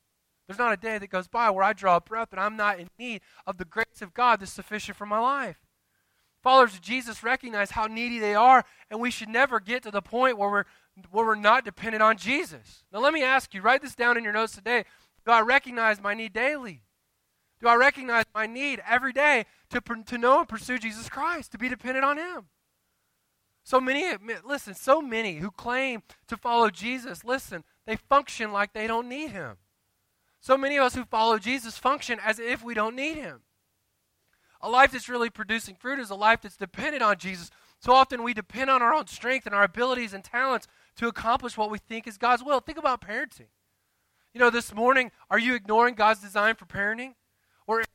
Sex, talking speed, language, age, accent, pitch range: male, 210 wpm, English, 20-39, American, 205-255 Hz